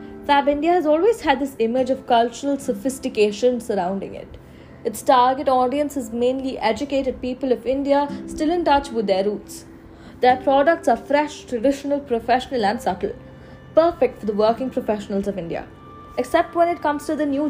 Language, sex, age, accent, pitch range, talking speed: English, female, 20-39, Indian, 220-295 Hz, 170 wpm